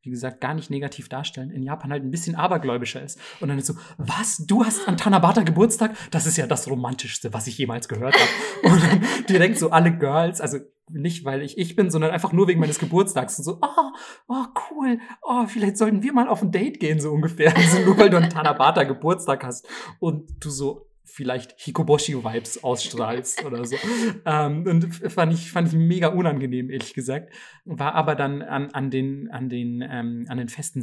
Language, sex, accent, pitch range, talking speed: German, male, German, 140-185 Hz, 200 wpm